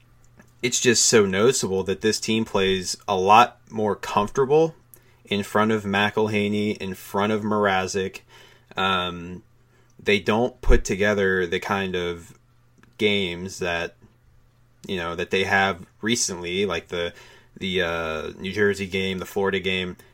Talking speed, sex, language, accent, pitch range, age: 135 wpm, male, English, American, 95-115 Hz, 30-49